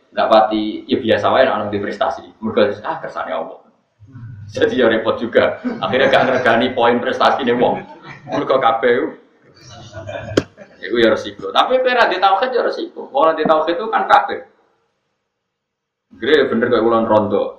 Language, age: Indonesian, 20-39